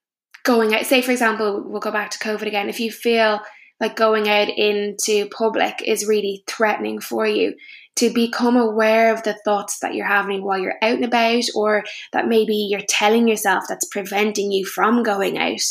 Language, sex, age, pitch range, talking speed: English, female, 10-29, 205-225 Hz, 190 wpm